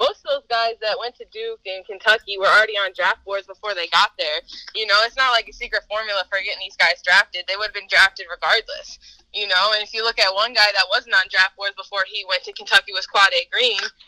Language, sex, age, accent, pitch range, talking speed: English, female, 10-29, American, 200-240 Hz, 260 wpm